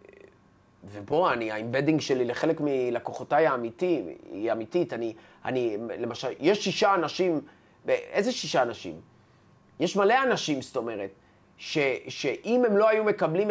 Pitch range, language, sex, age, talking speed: 130-205 Hz, Hebrew, male, 30-49, 120 wpm